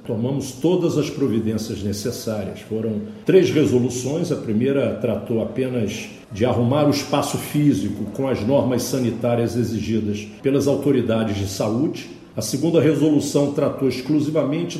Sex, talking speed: male, 125 wpm